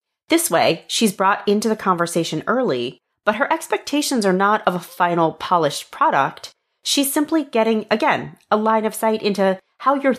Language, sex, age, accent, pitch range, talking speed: English, female, 30-49, American, 160-230 Hz, 170 wpm